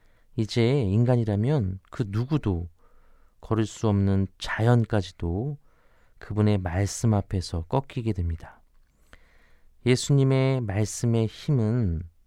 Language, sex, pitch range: Korean, male, 90-120 Hz